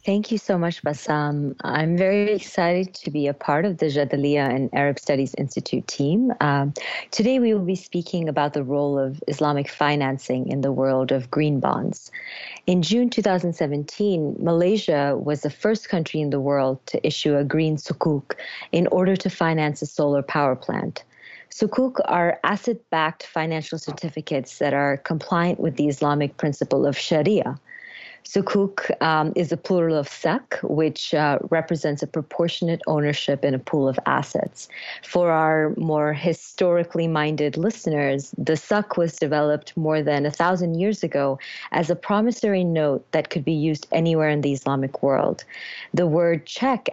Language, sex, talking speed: English, female, 160 wpm